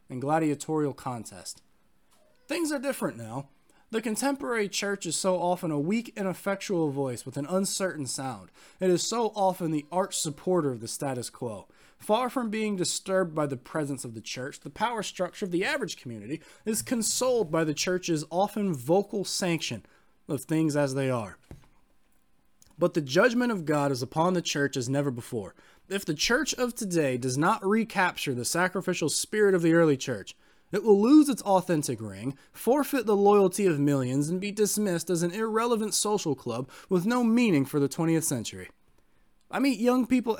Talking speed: 175 wpm